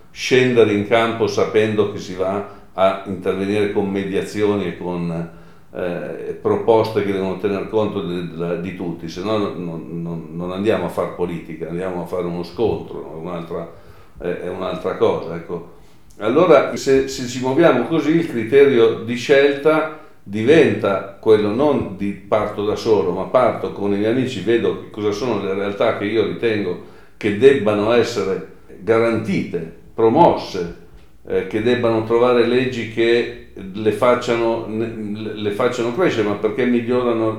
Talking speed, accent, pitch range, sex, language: 145 wpm, native, 100-120 Hz, male, Italian